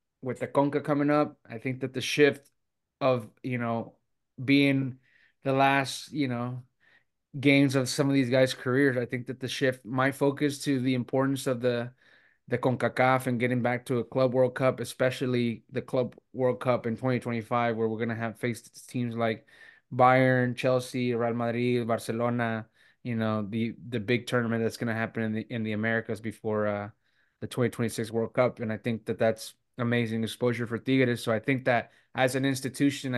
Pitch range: 115-130 Hz